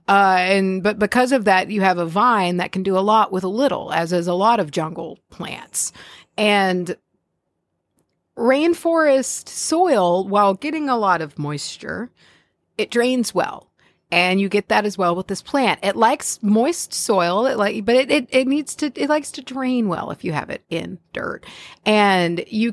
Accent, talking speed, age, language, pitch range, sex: American, 185 wpm, 40-59, English, 180-245 Hz, female